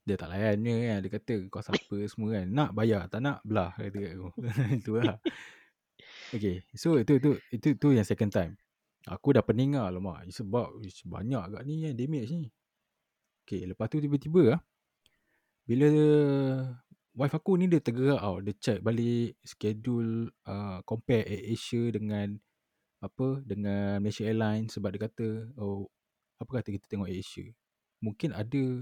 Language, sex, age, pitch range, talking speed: Malay, male, 20-39, 105-135 Hz, 160 wpm